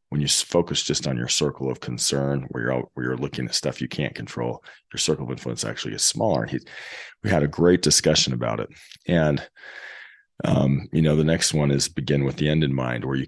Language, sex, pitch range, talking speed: English, male, 70-85 Hz, 235 wpm